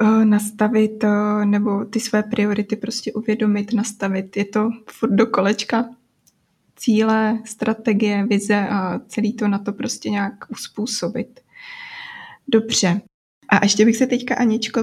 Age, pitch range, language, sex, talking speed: 20-39, 200-225 Hz, Czech, female, 125 wpm